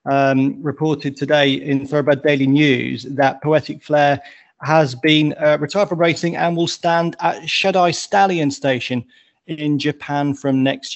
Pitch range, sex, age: 135-155 Hz, male, 30-49